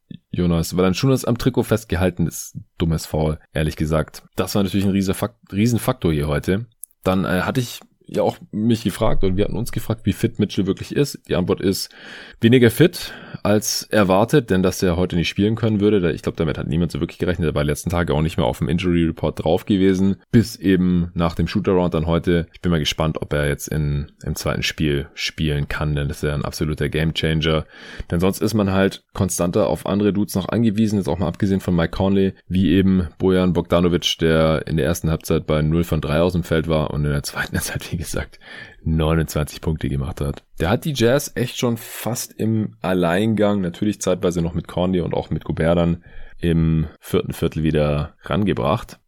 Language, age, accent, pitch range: German, 20-39, German, 80-100 Hz